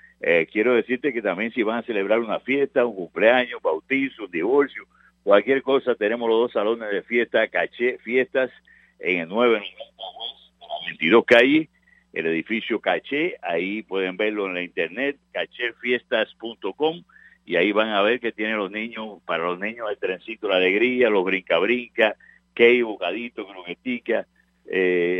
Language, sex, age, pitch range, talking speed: English, male, 50-69, 95-130 Hz, 155 wpm